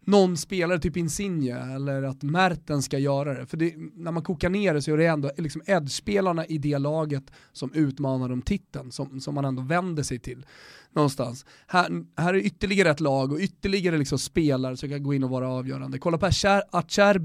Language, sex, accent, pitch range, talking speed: Swedish, male, native, 140-180 Hz, 205 wpm